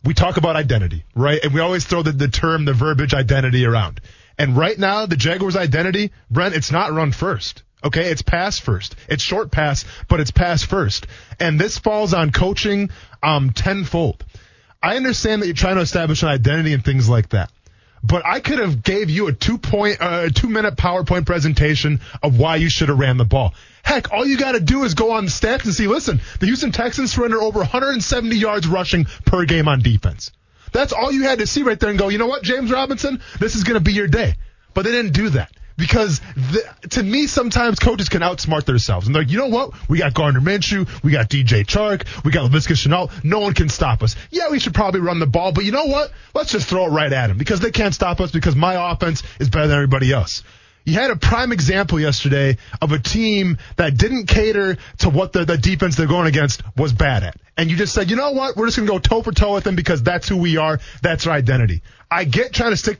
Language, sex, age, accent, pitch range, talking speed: English, male, 20-39, American, 130-205 Hz, 235 wpm